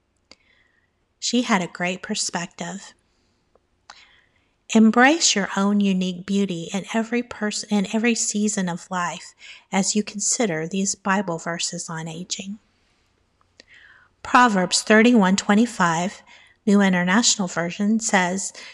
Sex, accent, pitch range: female, American, 185-225 Hz